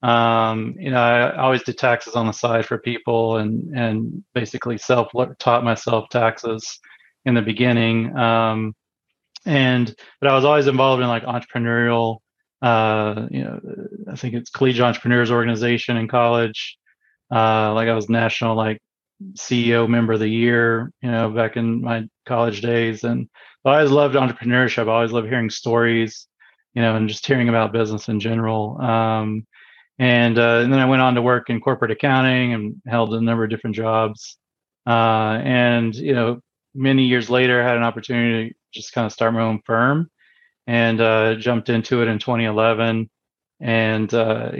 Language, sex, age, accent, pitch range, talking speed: English, male, 30-49, American, 110-125 Hz, 175 wpm